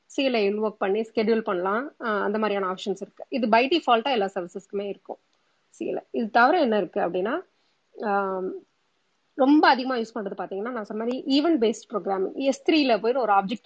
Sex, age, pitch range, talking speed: female, 30-49, 200-250 Hz, 145 wpm